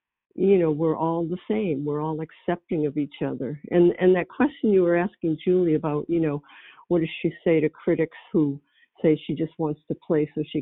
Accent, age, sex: American, 60-79, female